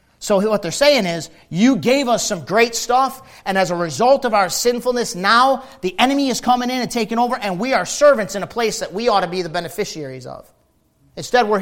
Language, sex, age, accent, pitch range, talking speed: English, male, 40-59, American, 165-240 Hz, 225 wpm